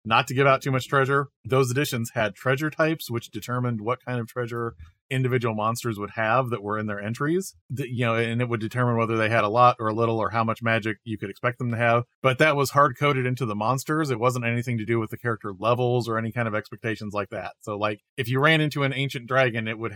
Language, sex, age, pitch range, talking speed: English, male, 30-49, 110-130 Hz, 260 wpm